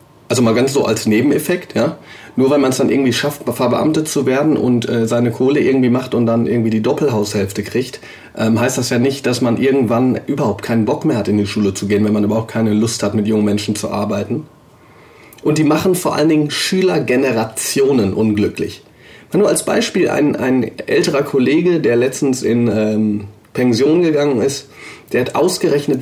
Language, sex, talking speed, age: German, male, 195 wpm, 30-49